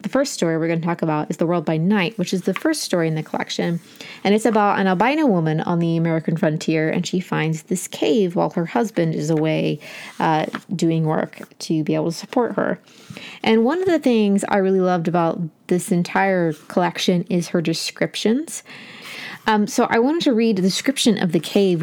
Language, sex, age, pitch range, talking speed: English, female, 20-39, 170-220 Hz, 210 wpm